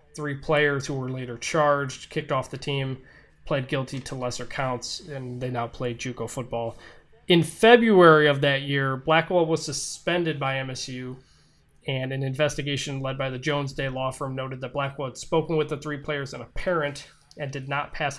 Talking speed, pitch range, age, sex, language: 190 wpm, 130-155 Hz, 20-39, male, English